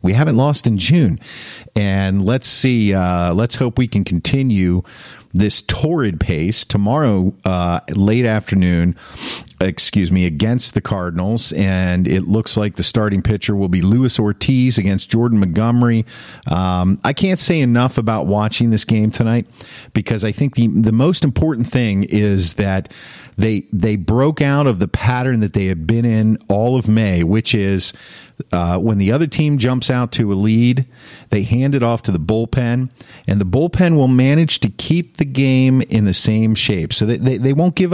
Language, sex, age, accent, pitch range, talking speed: English, male, 50-69, American, 100-130 Hz, 175 wpm